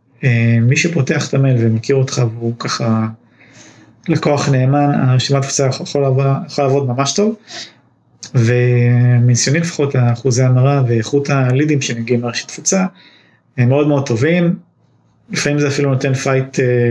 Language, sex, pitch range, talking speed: Hebrew, male, 120-140 Hz, 130 wpm